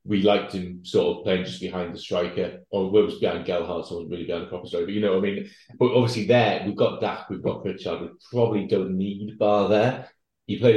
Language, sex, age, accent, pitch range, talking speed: English, male, 30-49, British, 90-105 Hz, 255 wpm